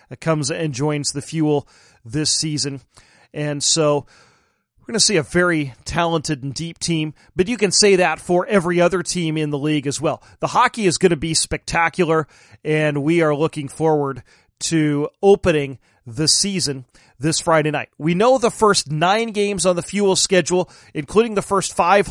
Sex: male